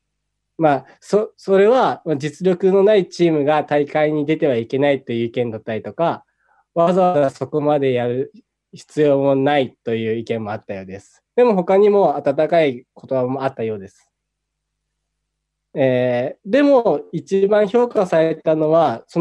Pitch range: 130-180 Hz